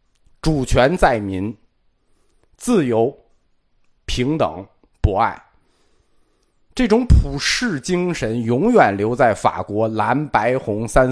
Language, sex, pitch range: Chinese, male, 100-170 Hz